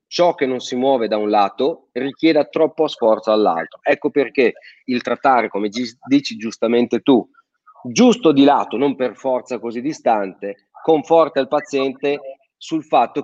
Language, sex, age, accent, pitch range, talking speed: Italian, male, 40-59, native, 115-150 Hz, 150 wpm